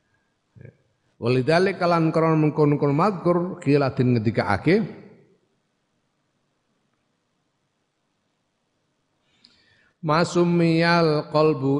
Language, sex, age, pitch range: Indonesian, male, 50-69, 110-155 Hz